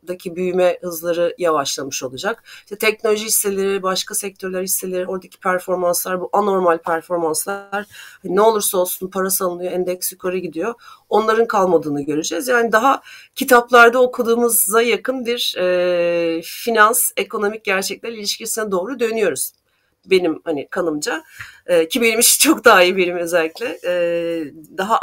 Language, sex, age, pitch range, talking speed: Turkish, female, 40-59, 170-230 Hz, 130 wpm